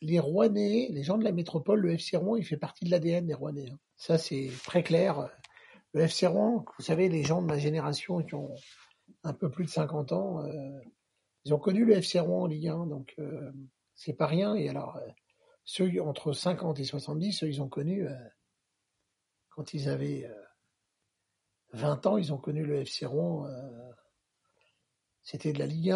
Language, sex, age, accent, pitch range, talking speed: French, male, 60-79, French, 145-185 Hz, 195 wpm